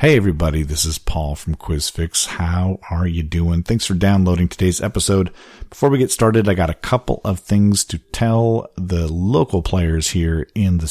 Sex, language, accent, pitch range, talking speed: male, English, American, 85-105 Hz, 185 wpm